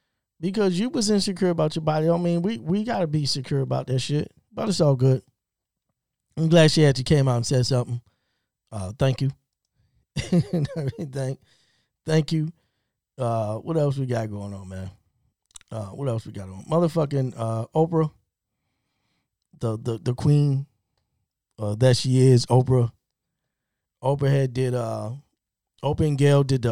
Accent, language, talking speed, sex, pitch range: American, English, 155 wpm, male, 110-135 Hz